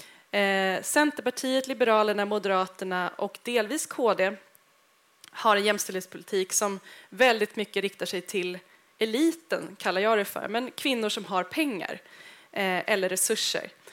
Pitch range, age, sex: 195-235 Hz, 10-29, female